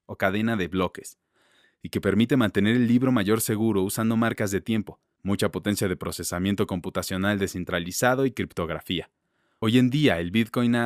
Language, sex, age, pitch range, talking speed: Spanish, male, 20-39, 95-115 Hz, 165 wpm